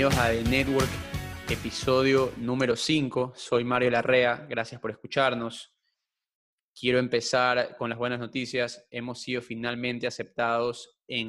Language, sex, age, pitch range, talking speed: Spanish, male, 20-39, 120-135 Hz, 120 wpm